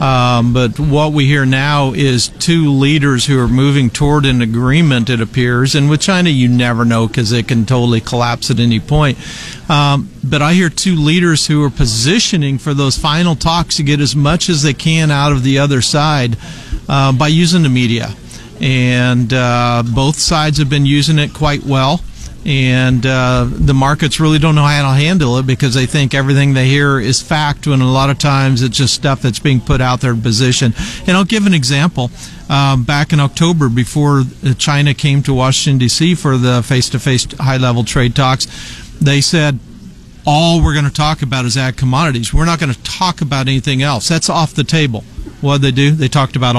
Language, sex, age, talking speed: English, male, 50-69, 200 wpm